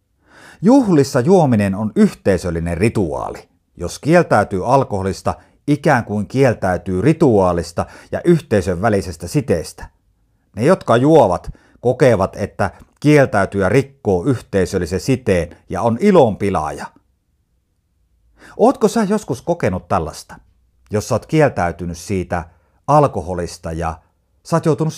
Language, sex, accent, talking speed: Finnish, male, native, 105 wpm